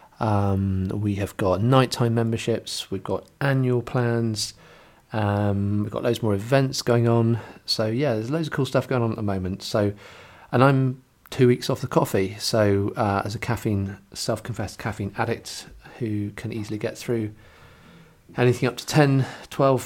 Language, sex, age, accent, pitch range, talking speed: English, male, 40-59, British, 95-115 Hz, 170 wpm